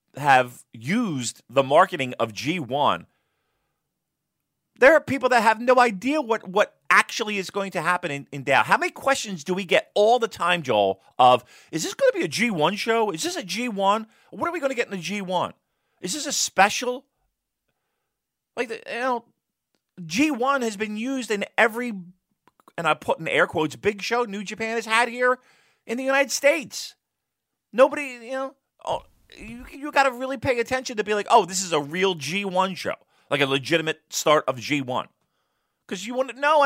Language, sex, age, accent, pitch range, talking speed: English, male, 40-59, American, 145-245 Hz, 190 wpm